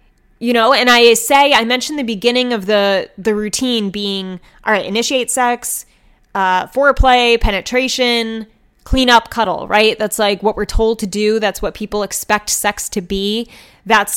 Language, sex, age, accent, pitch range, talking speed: English, female, 10-29, American, 200-240 Hz, 170 wpm